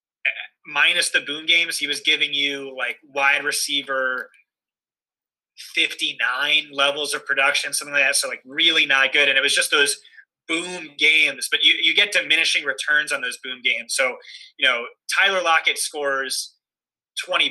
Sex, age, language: male, 20-39, English